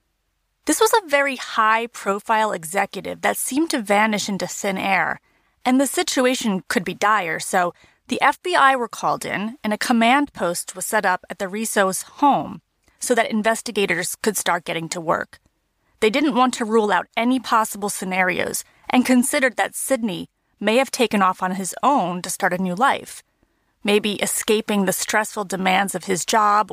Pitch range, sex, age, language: 195-255 Hz, female, 30-49, English